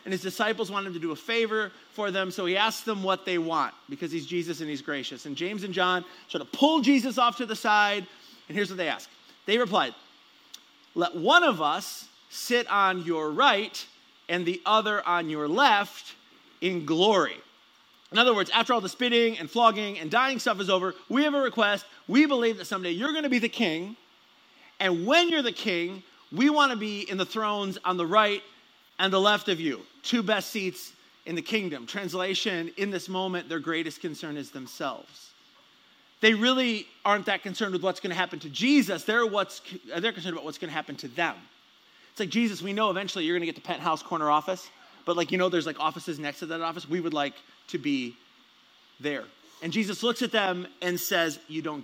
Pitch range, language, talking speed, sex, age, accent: 175-230 Hz, English, 215 wpm, male, 30-49, American